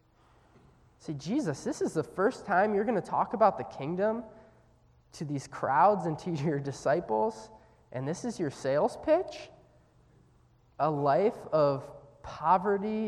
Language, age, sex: English, 20-39, male